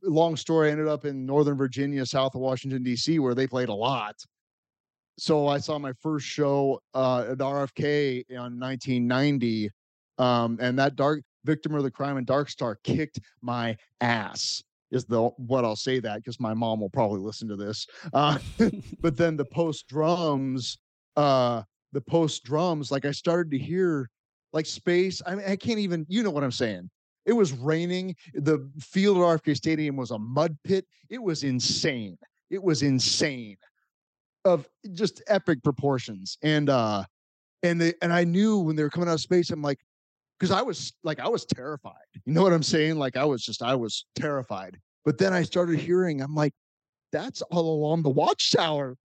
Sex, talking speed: male, 185 wpm